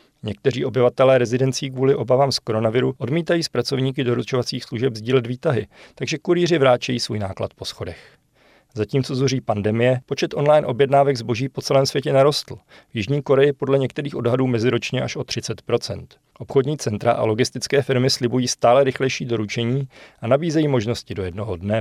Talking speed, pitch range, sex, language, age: 155 wpm, 115-140 Hz, male, Czech, 40-59